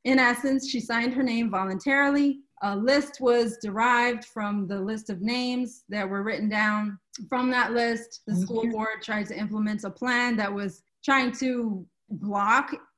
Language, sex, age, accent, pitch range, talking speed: English, female, 30-49, American, 205-245 Hz, 165 wpm